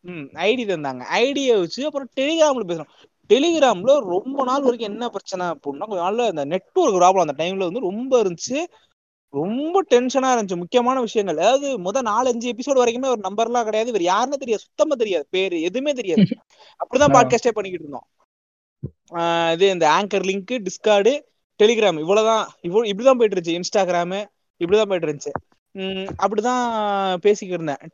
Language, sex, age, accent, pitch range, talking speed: Tamil, male, 20-39, native, 175-245 Hz, 120 wpm